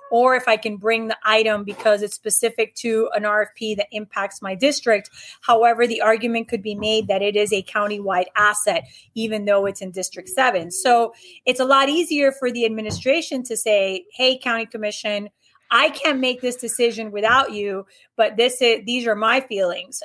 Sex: female